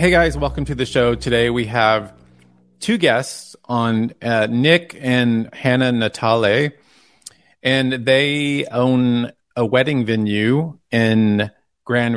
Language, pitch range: English, 105-120 Hz